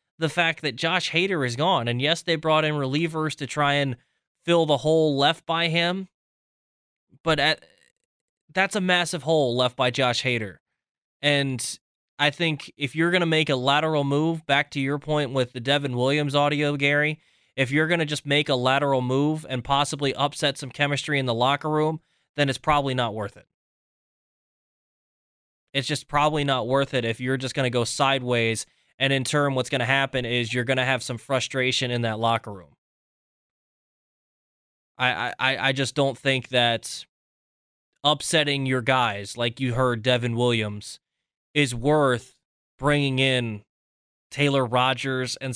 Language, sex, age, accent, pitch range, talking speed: English, male, 20-39, American, 125-155 Hz, 170 wpm